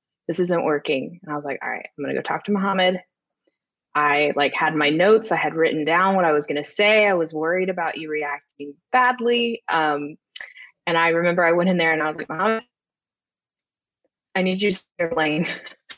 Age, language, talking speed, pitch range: 20-39, English, 205 wpm, 155-210 Hz